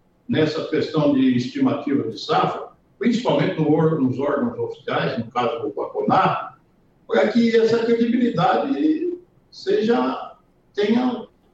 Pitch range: 155-240 Hz